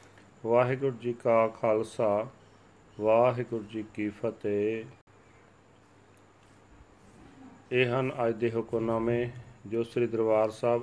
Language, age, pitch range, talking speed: Punjabi, 40-59, 105-125 Hz, 95 wpm